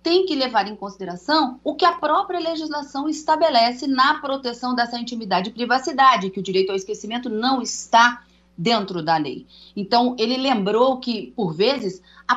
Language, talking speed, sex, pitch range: Portuguese, 165 wpm, female, 210-285 Hz